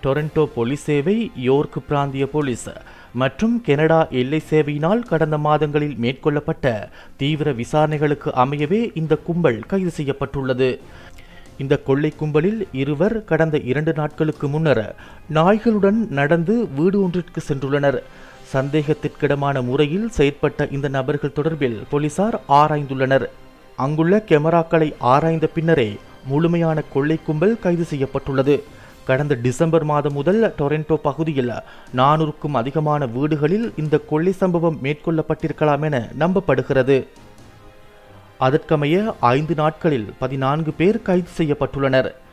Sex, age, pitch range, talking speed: male, 30-49, 135-160 Hz, 90 wpm